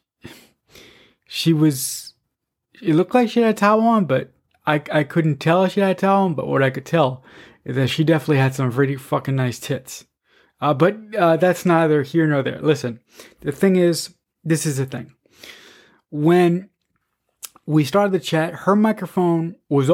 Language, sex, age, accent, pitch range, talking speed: English, male, 20-39, American, 145-175 Hz, 185 wpm